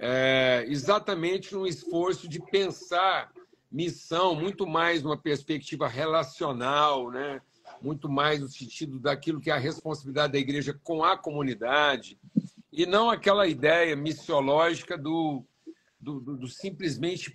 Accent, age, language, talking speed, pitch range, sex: Brazilian, 60-79, Portuguese, 130 wpm, 145-185 Hz, male